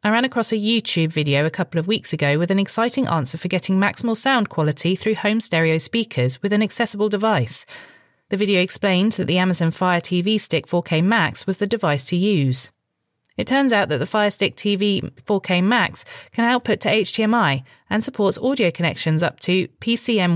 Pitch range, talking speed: 155-215 Hz, 190 wpm